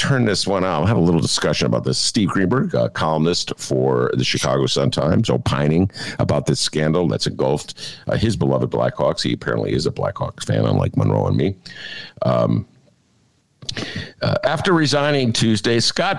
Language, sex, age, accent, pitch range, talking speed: English, male, 50-69, American, 85-140 Hz, 165 wpm